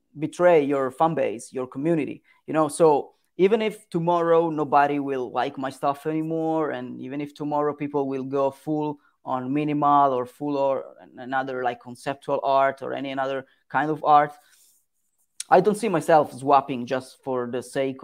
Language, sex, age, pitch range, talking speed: Italian, female, 20-39, 130-155 Hz, 165 wpm